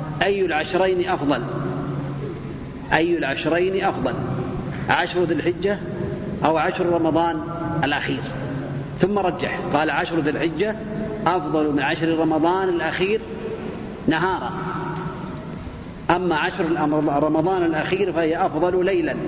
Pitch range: 150-185 Hz